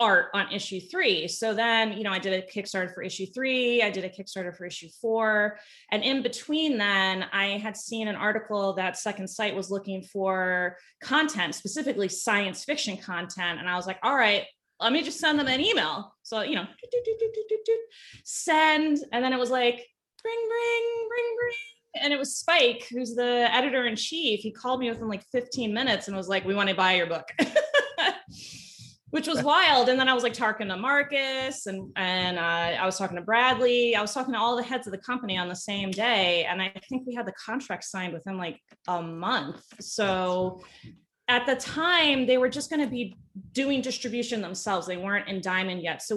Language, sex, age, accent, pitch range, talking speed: English, female, 20-39, American, 190-260 Hz, 210 wpm